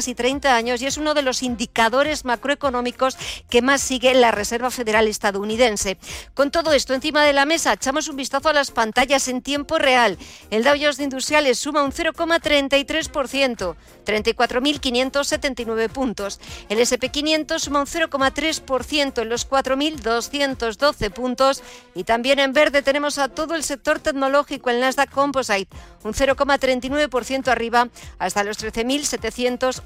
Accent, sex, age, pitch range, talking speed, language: Spanish, female, 50-69, 240-285 Hz, 145 wpm, Spanish